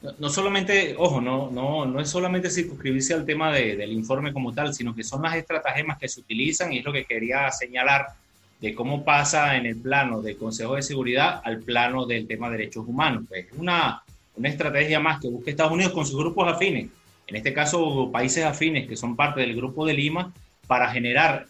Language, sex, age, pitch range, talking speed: Spanish, male, 30-49, 120-160 Hz, 210 wpm